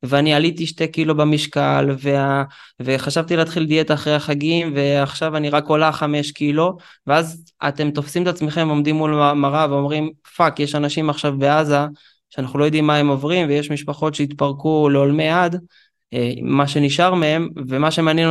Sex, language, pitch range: male, Hebrew, 140-165 Hz